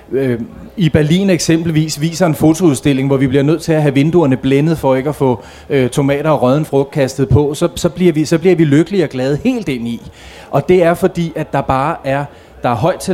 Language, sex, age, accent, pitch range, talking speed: Danish, male, 30-49, native, 125-155 Hz, 235 wpm